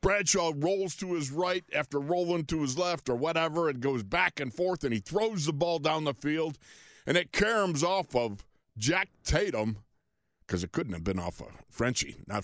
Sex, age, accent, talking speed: male, 50-69, American, 200 wpm